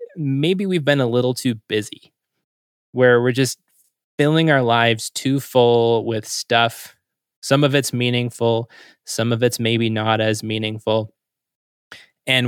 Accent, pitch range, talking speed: American, 110-130 Hz, 140 wpm